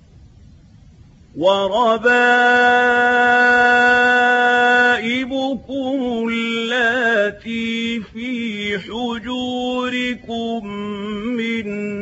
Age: 40-59